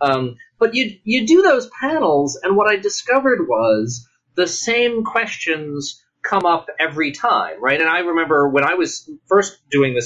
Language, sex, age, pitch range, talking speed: English, male, 30-49, 135-230 Hz, 175 wpm